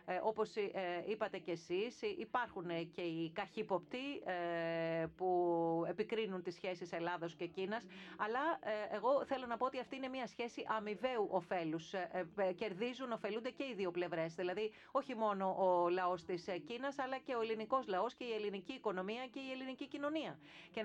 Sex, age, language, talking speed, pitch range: female, 40-59, Greek, 155 wpm, 180-230 Hz